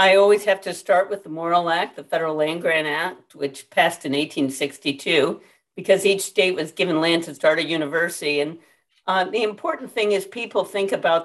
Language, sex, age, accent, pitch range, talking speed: English, female, 50-69, American, 145-190 Hz, 195 wpm